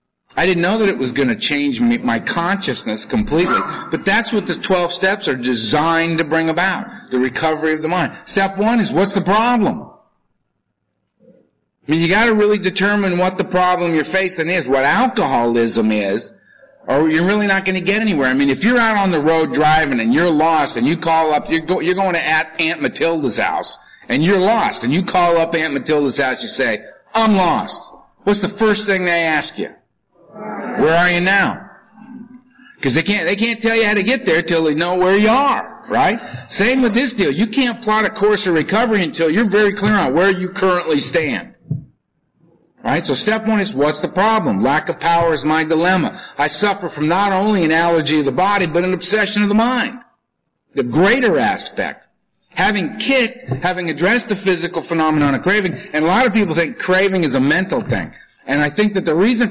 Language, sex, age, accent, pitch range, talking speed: English, male, 50-69, American, 160-210 Hz, 205 wpm